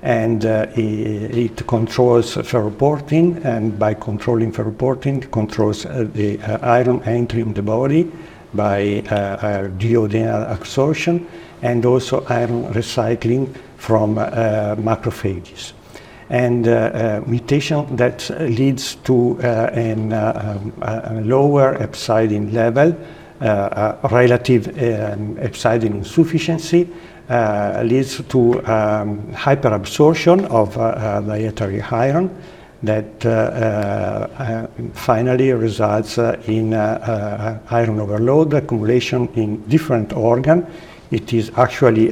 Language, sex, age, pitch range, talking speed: English, male, 60-79, 110-130 Hz, 120 wpm